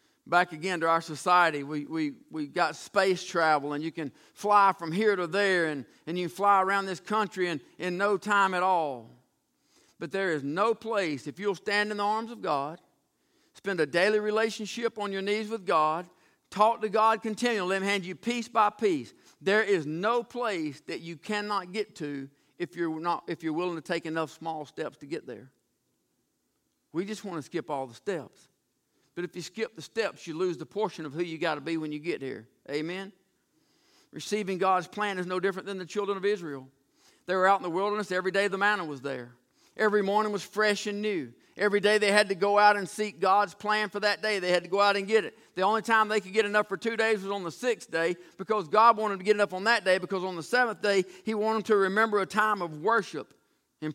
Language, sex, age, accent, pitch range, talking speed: English, male, 50-69, American, 165-210 Hz, 230 wpm